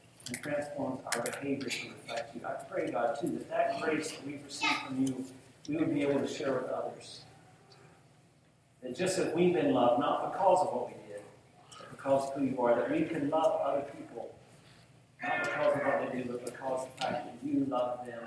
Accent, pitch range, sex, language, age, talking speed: American, 125-150 Hz, male, English, 40-59, 215 wpm